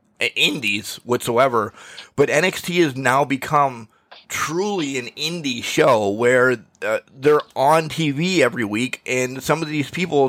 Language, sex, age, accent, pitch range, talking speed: English, male, 30-49, American, 125-165 Hz, 135 wpm